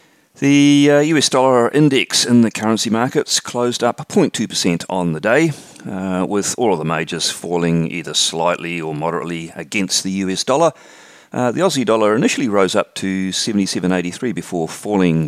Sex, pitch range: male, 80-115 Hz